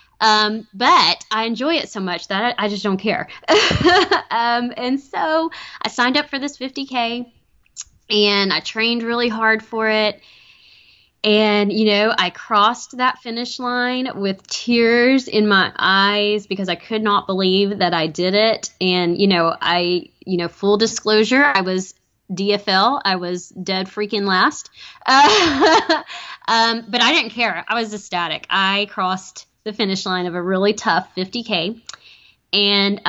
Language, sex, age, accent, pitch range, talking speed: English, female, 20-39, American, 195-260 Hz, 160 wpm